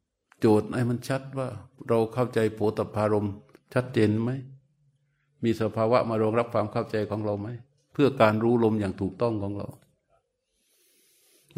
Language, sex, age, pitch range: Thai, male, 60-79, 115-145 Hz